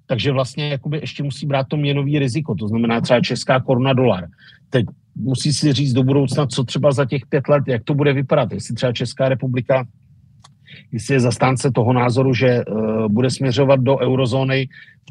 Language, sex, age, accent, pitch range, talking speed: Czech, male, 50-69, native, 125-145 Hz, 185 wpm